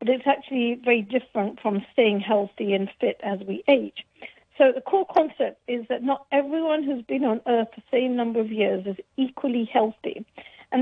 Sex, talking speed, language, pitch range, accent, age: female, 190 wpm, English, 220-270 Hz, British, 50-69